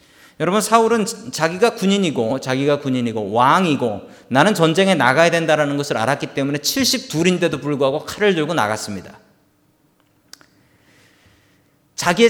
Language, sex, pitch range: Korean, male, 125-200 Hz